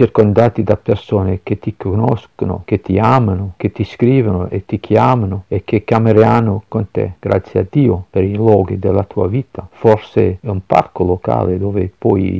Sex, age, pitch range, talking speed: male, 50-69, 95-115 Hz, 175 wpm